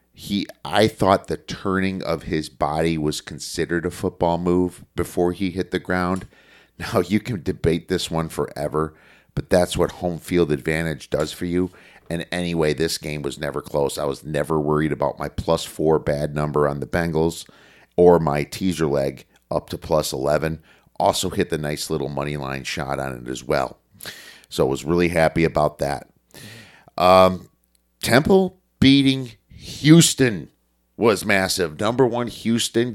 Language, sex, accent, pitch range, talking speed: English, male, American, 75-95 Hz, 165 wpm